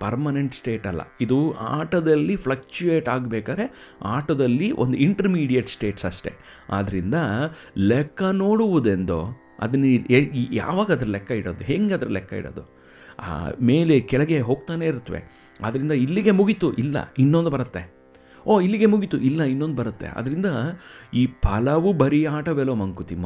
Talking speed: 115 wpm